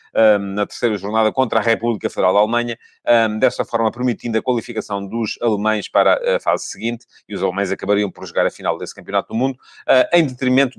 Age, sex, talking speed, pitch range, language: 30-49, male, 190 wpm, 110-145 Hz, English